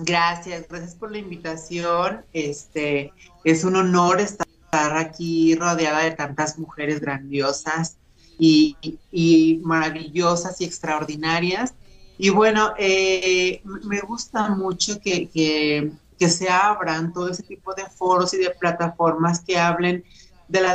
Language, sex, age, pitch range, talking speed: Spanish, male, 30-49, 165-195 Hz, 130 wpm